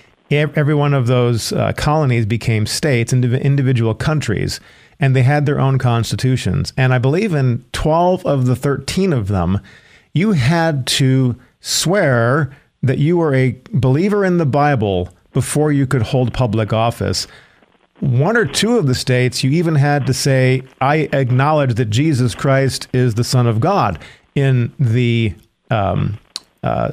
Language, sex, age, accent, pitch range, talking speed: English, male, 50-69, American, 125-150 Hz, 155 wpm